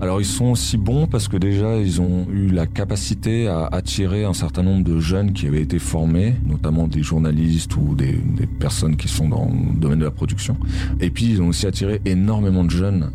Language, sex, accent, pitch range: French, male, French, 80-95 Hz